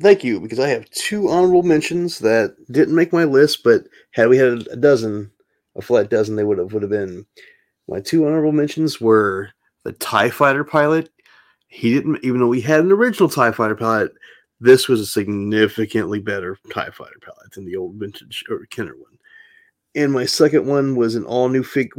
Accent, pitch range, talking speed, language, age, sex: American, 110-160 Hz, 195 wpm, English, 30-49, male